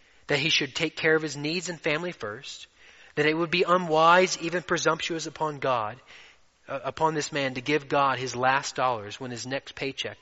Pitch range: 130-175 Hz